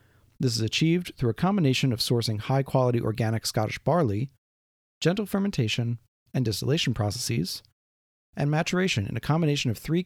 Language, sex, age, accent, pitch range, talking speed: English, male, 40-59, American, 110-145 Hz, 145 wpm